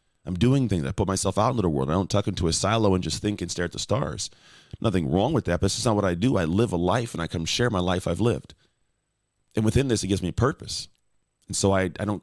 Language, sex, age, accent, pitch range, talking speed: English, male, 30-49, American, 90-110 Hz, 290 wpm